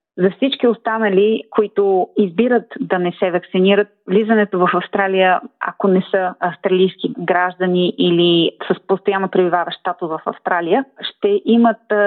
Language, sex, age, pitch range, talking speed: Bulgarian, female, 30-49, 180-215 Hz, 125 wpm